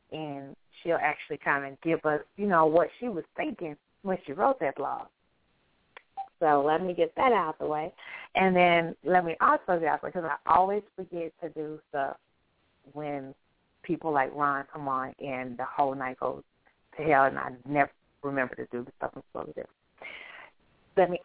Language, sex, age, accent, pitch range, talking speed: English, female, 30-49, American, 145-185 Hz, 190 wpm